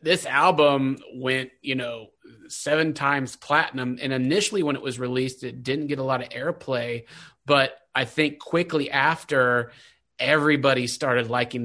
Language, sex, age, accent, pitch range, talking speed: English, male, 30-49, American, 125-145 Hz, 150 wpm